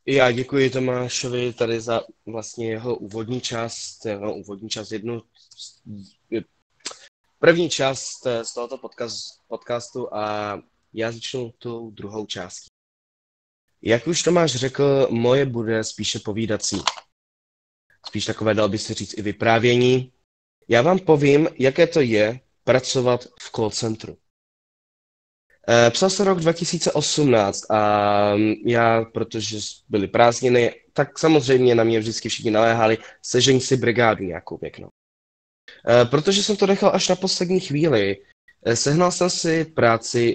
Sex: male